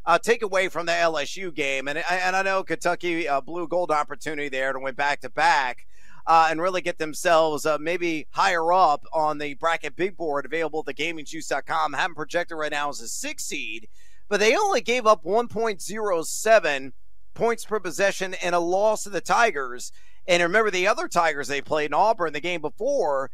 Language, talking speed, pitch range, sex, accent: English, 190 wpm, 155-200 Hz, male, American